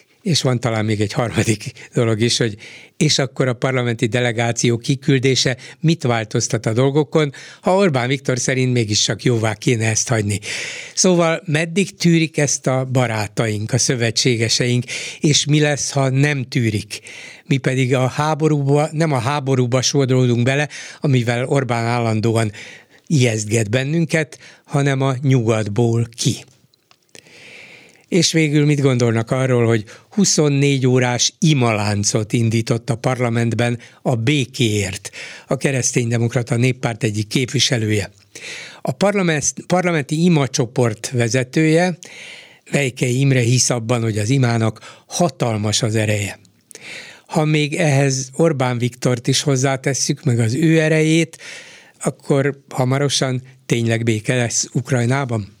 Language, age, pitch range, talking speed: Hungarian, 60-79, 120-150 Hz, 120 wpm